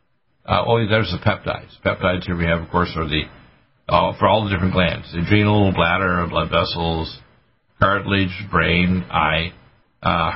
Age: 60-79